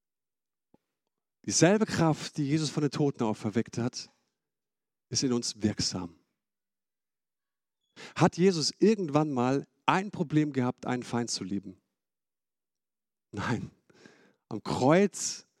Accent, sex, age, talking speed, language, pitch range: German, male, 50-69, 105 wpm, German, 130-190 Hz